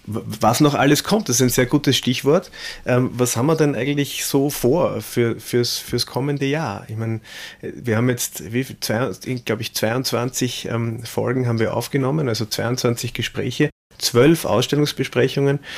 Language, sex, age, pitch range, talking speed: German, male, 30-49, 100-125 Hz, 155 wpm